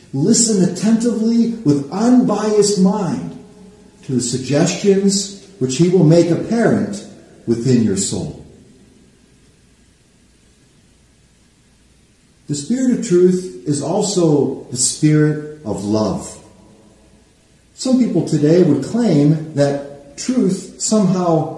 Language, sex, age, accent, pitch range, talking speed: English, male, 50-69, American, 150-205 Hz, 95 wpm